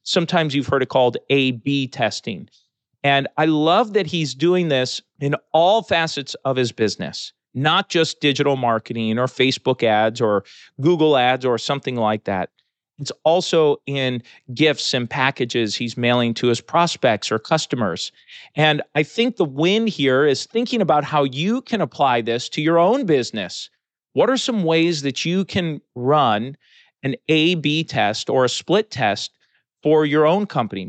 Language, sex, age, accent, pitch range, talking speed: English, male, 40-59, American, 125-175 Hz, 165 wpm